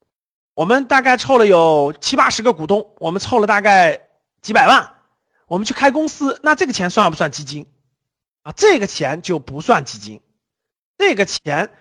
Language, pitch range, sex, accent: Chinese, 180-305 Hz, male, native